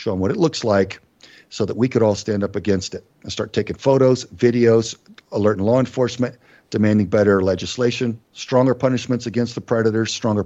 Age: 50-69